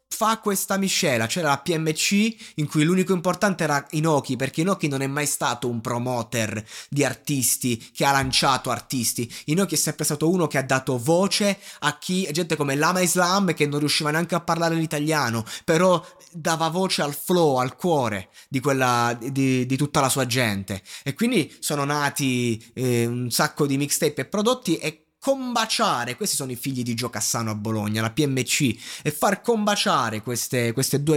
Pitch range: 125-180 Hz